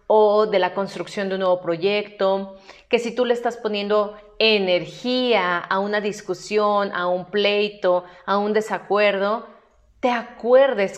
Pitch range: 180-225 Hz